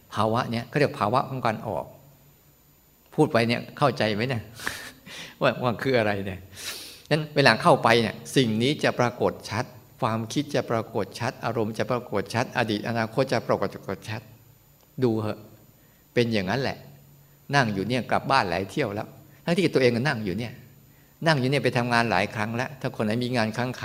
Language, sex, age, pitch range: Thai, male, 60-79, 115-145 Hz